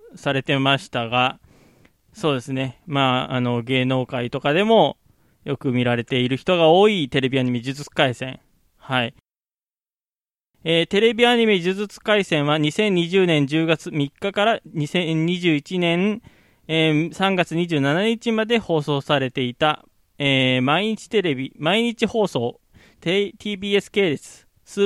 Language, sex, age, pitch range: Japanese, male, 20-39, 135-195 Hz